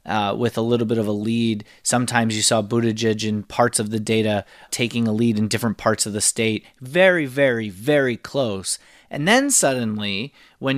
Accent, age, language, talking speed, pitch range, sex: American, 30-49, English, 185 wpm, 110-150 Hz, male